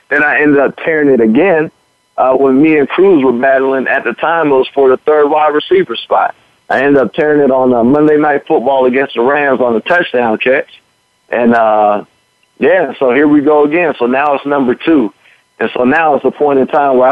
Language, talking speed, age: English, 225 wpm, 50-69